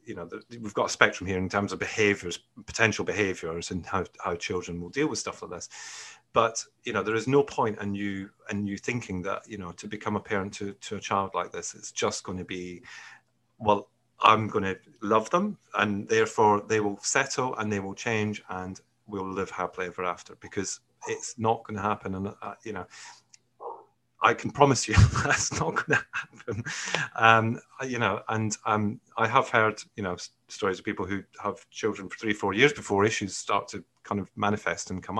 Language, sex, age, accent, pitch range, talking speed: English, male, 30-49, British, 100-120 Hz, 210 wpm